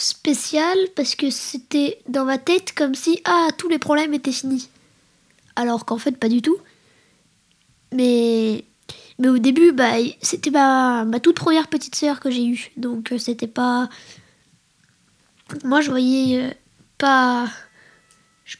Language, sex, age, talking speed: French, female, 20-39, 145 wpm